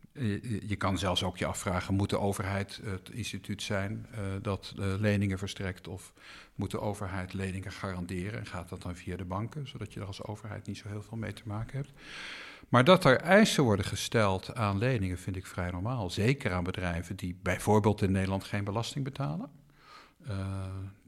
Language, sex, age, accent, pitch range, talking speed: Dutch, male, 50-69, Dutch, 95-120 Hz, 185 wpm